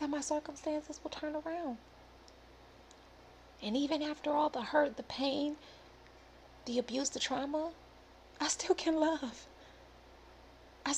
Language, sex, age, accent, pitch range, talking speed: English, female, 30-49, American, 190-285 Hz, 125 wpm